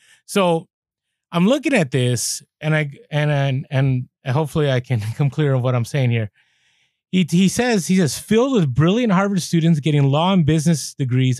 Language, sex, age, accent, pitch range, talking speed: English, male, 30-49, American, 130-185 Hz, 185 wpm